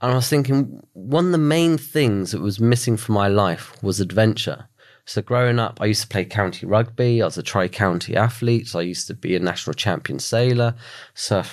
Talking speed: 210 wpm